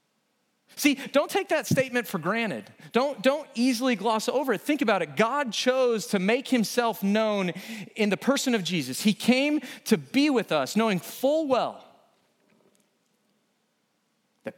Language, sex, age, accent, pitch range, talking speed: English, male, 40-59, American, 170-230 Hz, 150 wpm